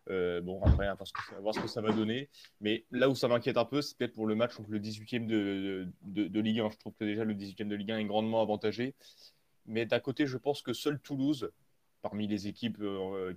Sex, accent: male, French